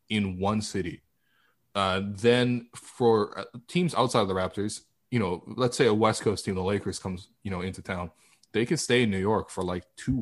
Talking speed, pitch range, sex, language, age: 205 wpm, 95-120 Hz, male, English, 20-39